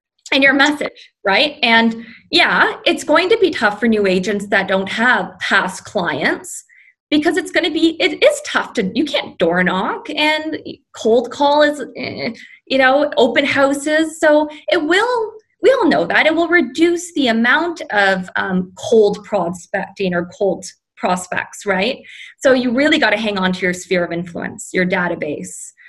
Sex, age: female, 20-39